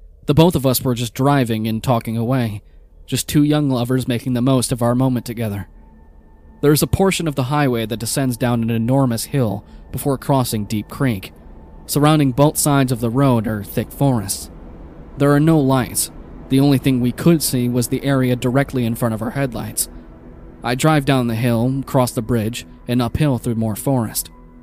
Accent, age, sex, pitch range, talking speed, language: American, 20-39, male, 105-135 Hz, 190 wpm, English